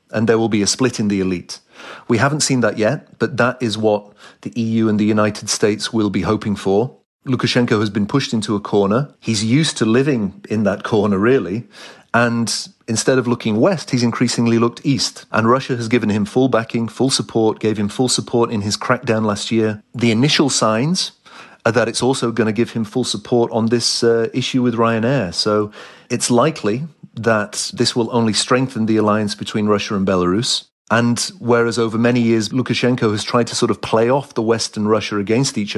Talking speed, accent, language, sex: 205 wpm, British, English, male